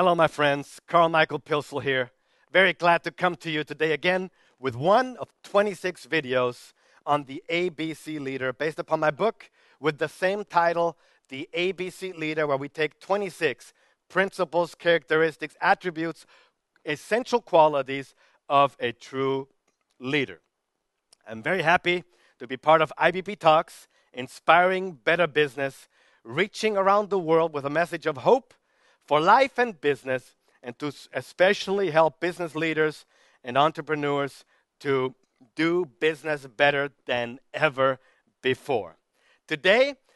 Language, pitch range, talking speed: English, 145-185 Hz, 135 wpm